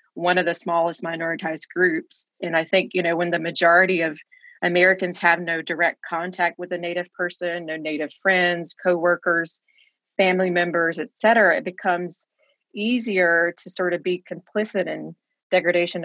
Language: English